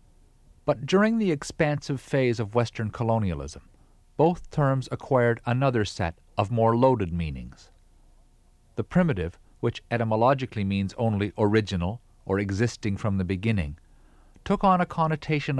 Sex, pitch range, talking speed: male, 90-140 Hz, 125 wpm